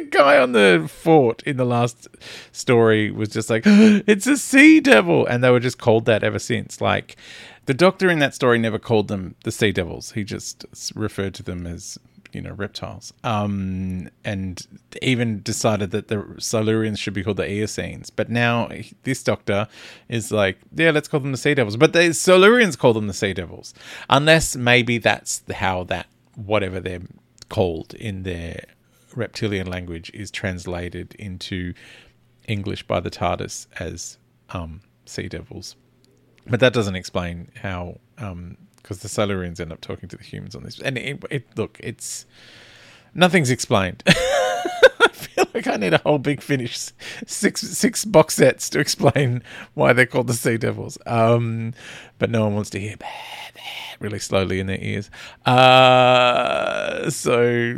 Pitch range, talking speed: 95-130 Hz, 165 wpm